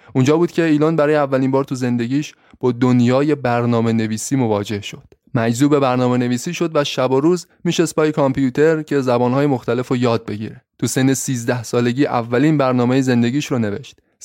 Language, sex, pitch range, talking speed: Persian, male, 115-140 Hz, 175 wpm